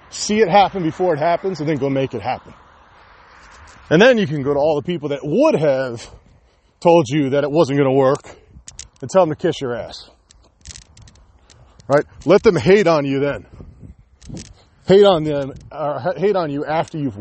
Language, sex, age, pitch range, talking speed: English, male, 30-49, 125-180 Hz, 190 wpm